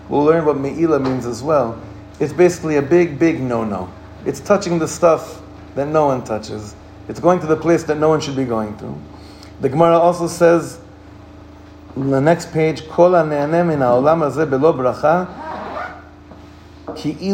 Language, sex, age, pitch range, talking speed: English, male, 40-59, 105-170 Hz, 140 wpm